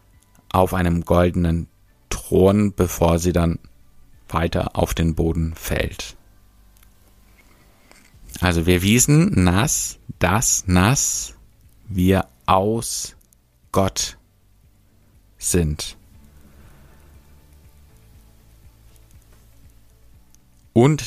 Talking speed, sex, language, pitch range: 65 wpm, male, German, 85-100 Hz